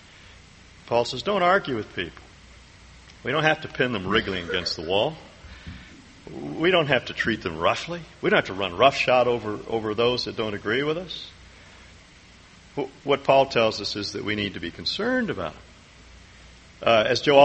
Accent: American